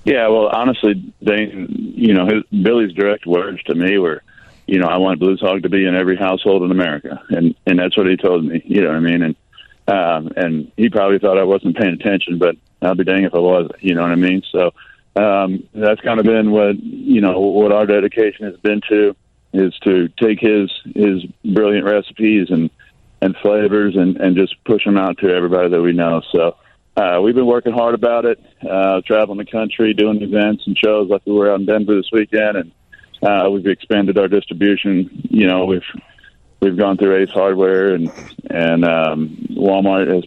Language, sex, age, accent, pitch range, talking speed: English, male, 40-59, American, 95-110 Hz, 205 wpm